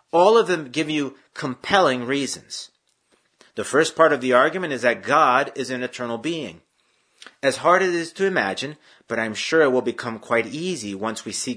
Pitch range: 125-155 Hz